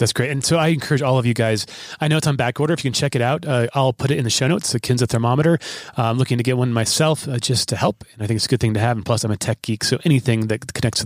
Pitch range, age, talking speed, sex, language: 115-140 Hz, 30-49, 340 wpm, male, English